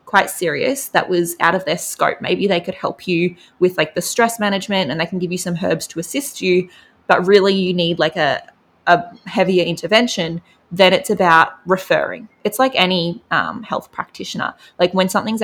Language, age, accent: English, 20-39, Australian